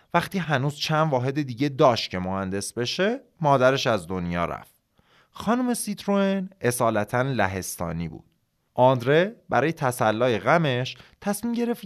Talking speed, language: 120 wpm, Persian